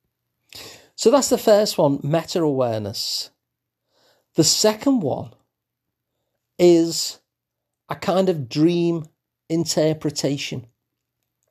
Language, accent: English, British